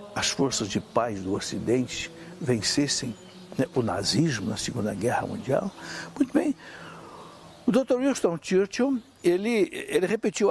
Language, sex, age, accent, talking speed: Portuguese, male, 60-79, Brazilian, 130 wpm